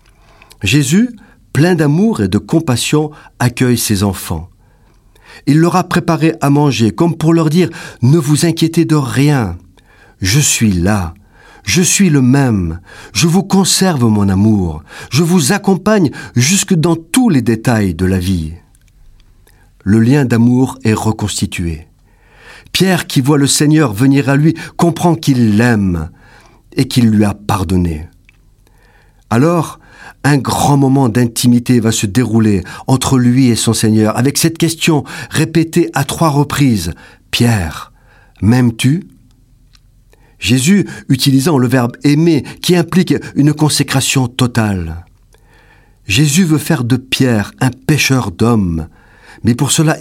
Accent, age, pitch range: French, 50-69, 105-150 Hz